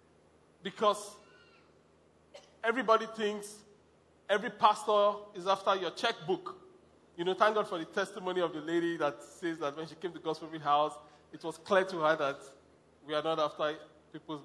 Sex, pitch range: male, 140-195 Hz